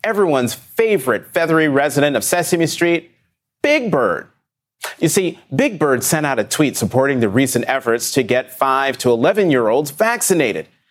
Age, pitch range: 30-49, 130-180 Hz